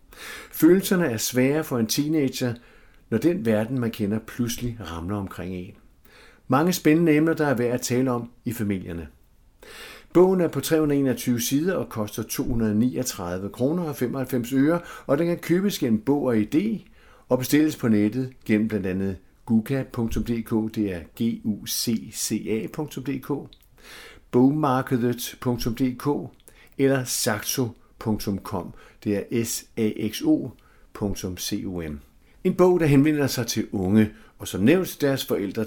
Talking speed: 125 wpm